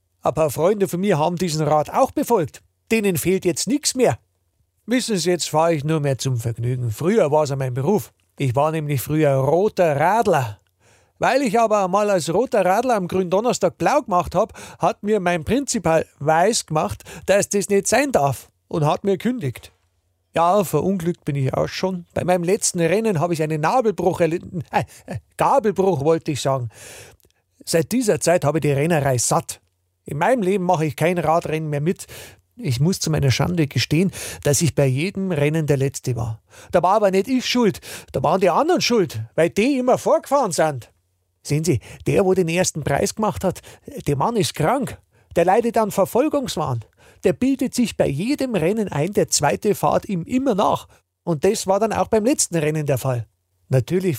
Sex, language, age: male, German, 50-69